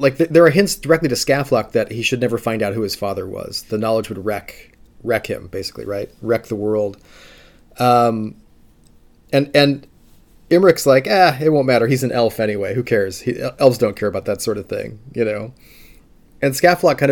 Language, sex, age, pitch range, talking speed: English, male, 30-49, 105-130 Hz, 205 wpm